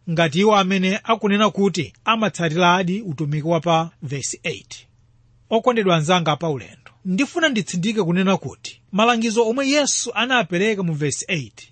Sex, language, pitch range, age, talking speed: male, English, 160-230 Hz, 30-49, 130 wpm